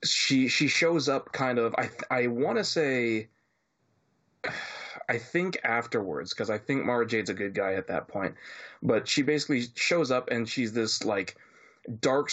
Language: English